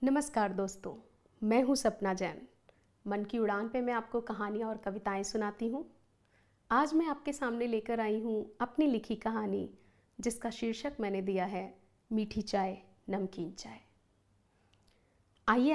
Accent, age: native, 50-69